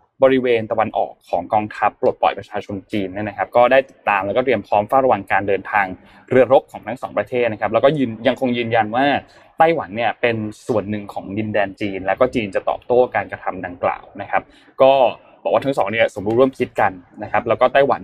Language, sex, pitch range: Thai, male, 105-130 Hz